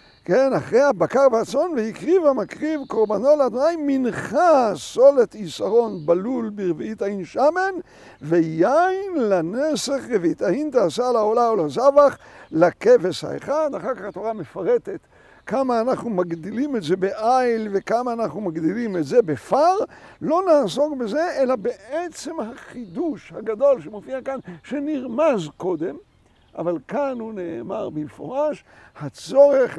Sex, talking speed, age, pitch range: male, 115 wpm, 60-79, 210-300 Hz